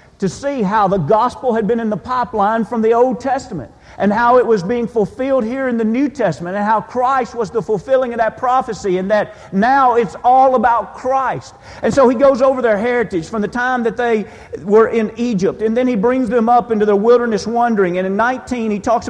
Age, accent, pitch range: 50-69, American, 205-240 Hz